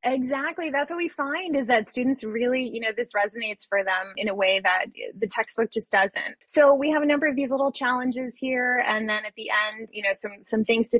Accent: American